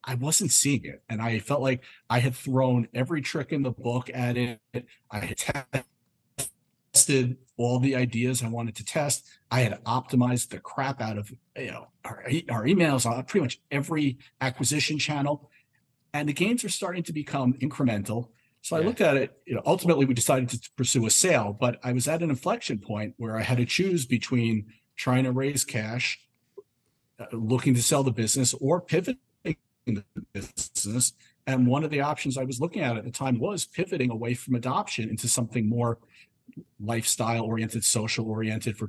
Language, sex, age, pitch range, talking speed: English, male, 50-69, 115-135 Hz, 185 wpm